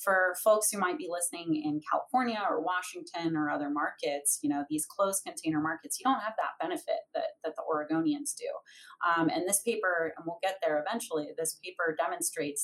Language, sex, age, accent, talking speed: English, female, 30-49, American, 195 wpm